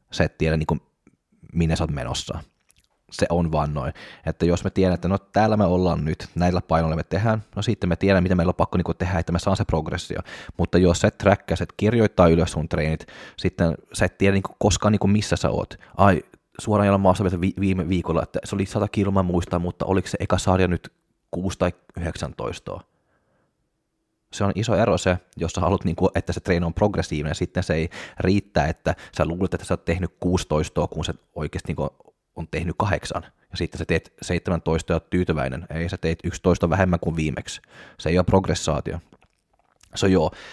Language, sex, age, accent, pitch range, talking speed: Finnish, male, 20-39, native, 85-100 Hz, 215 wpm